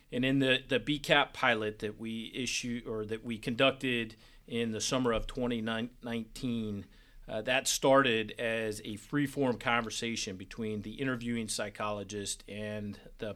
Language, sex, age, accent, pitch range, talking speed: English, male, 40-59, American, 110-130 Hz, 145 wpm